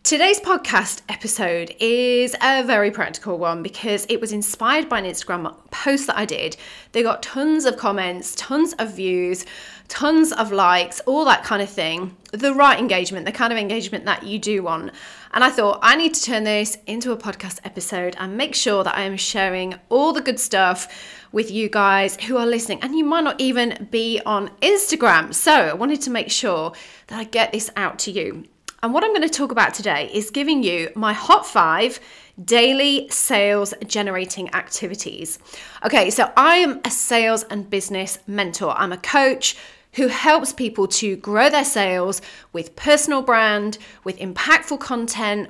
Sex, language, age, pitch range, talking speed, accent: female, English, 30-49, 195-270 Hz, 180 wpm, British